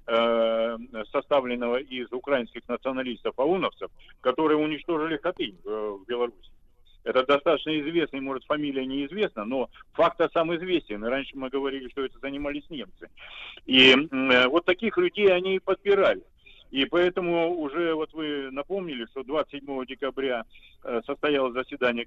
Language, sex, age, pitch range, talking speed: Russian, male, 50-69, 130-180 Hz, 120 wpm